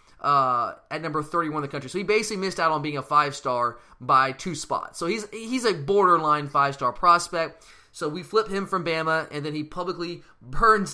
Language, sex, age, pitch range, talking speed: English, male, 20-39, 140-200 Hz, 205 wpm